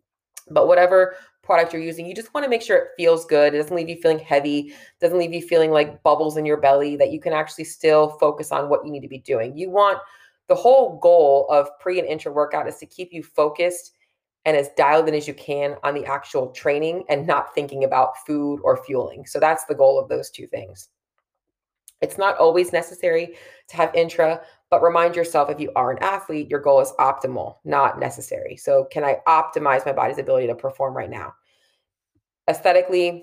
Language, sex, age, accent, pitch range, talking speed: English, female, 30-49, American, 145-175 Hz, 210 wpm